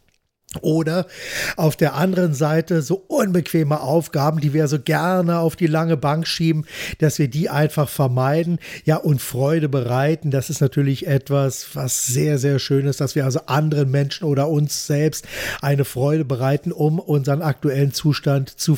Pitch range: 135-155 Hz